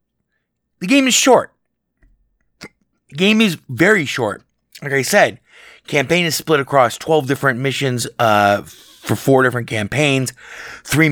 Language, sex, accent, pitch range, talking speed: English, male, American, 115-180 Hz, 135 wpm